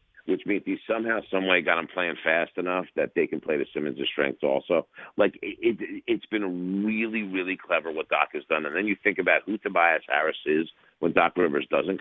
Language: English